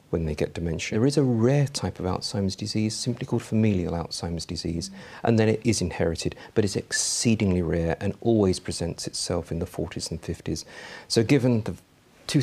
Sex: male